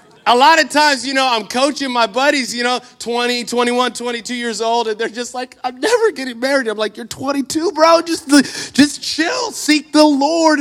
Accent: American